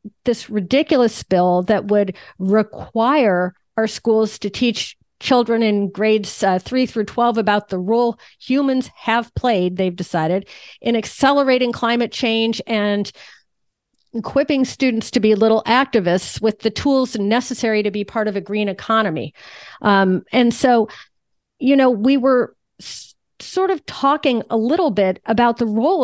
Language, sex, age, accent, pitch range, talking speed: English, female, 40-59, American, 205-250 Hz, 145 wpm